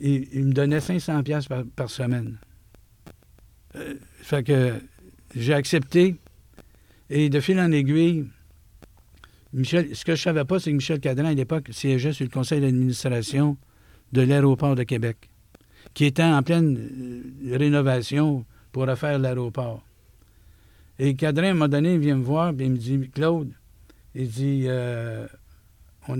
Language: French